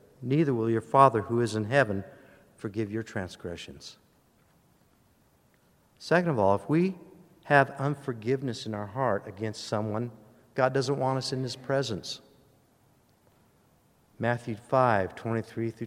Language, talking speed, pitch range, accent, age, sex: English, 130 wpm, 115-145 Hz, American, 50-69, male